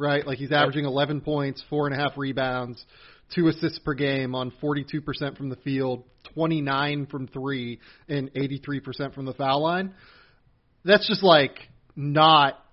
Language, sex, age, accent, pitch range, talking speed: English, male, 30-49, American, 135-165 Hz, 140 wpm